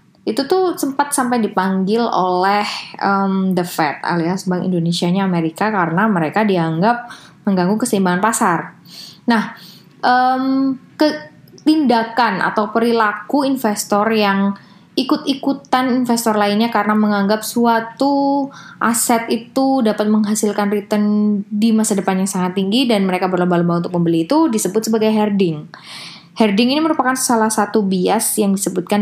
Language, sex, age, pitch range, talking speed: English, female, 20-39, 185-240 Hz, 125 wpm